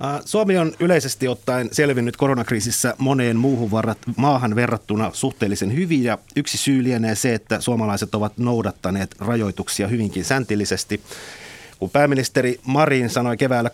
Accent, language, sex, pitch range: native, Finnish, male, 105-130 Hz